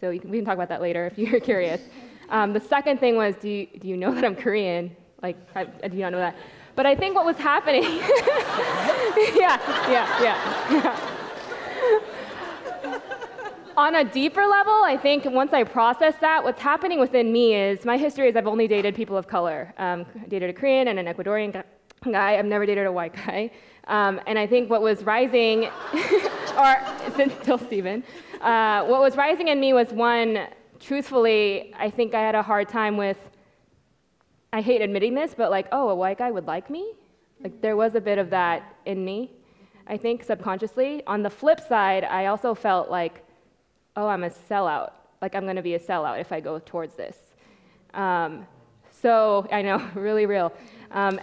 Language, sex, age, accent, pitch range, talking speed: English, female, 20-39, American, 195-255 Hz, 190 wpm